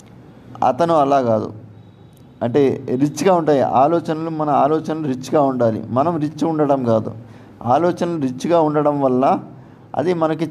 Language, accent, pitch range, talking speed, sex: Telugu, native, 120-155 Hz, 120 wpm, male